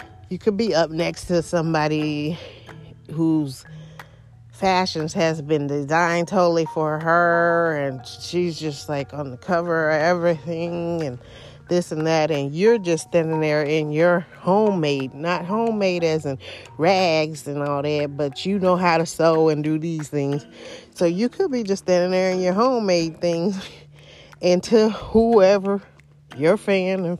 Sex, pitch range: female, 145-190 Hz